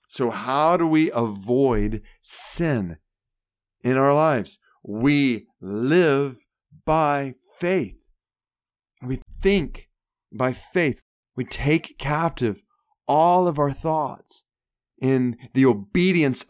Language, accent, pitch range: English, American, 130-165 Hz